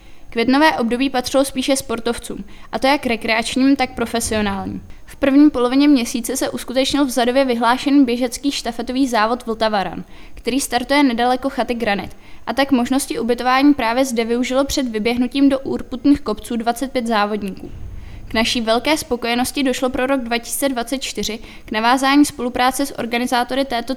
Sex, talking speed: female, 145 wpm